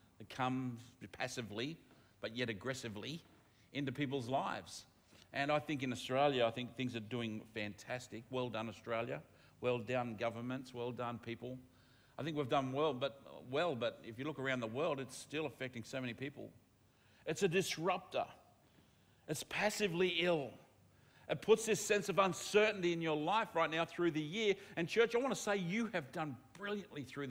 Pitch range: 125-170 Hz